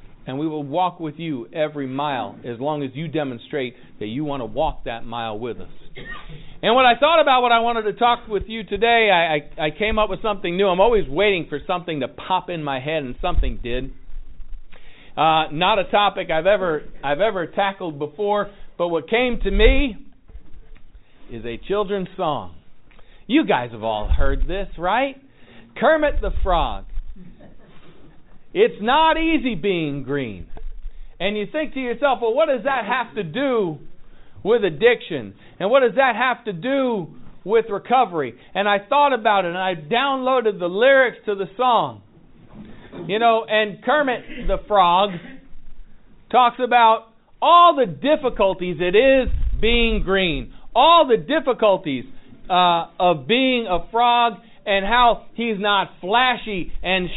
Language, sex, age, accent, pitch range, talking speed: English, male, 50-69, American, 160-240 Hz, 165 wpm